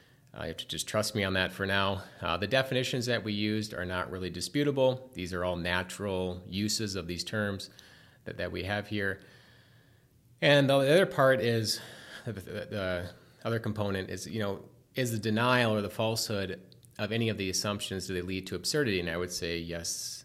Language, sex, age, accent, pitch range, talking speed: English, male, 30-49, American, 95-120 Hz, 200 wpm